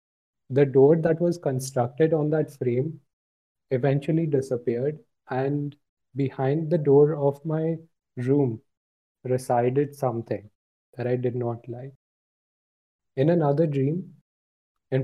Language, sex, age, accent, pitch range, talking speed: Hindi, male, 20-39, native, 115-140 Hz, 110 wpm